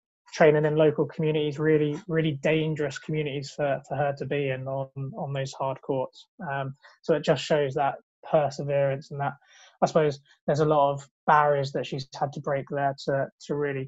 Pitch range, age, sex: 140-155 Hz, 20-39, male